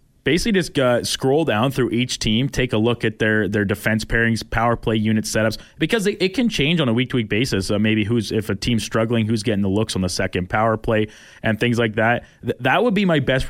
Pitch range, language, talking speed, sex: 100-125 Hz, English, 240 wpm, male